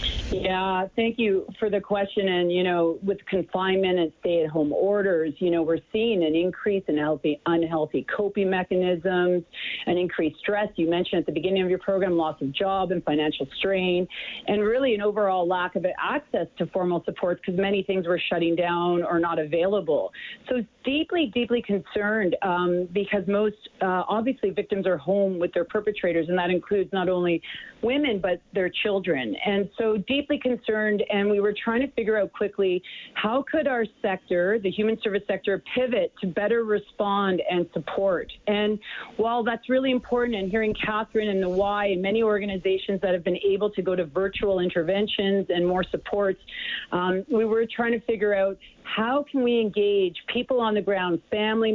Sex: female